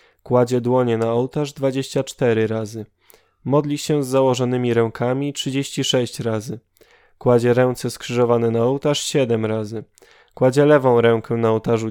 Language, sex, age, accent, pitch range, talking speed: Polish, male, 10-29, native, 115-145 Hz, 125 wpm